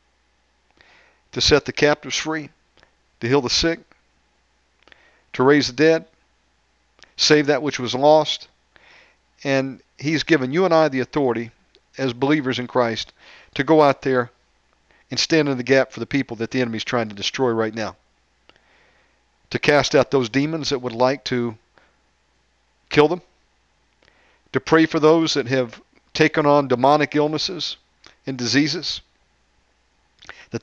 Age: 50-69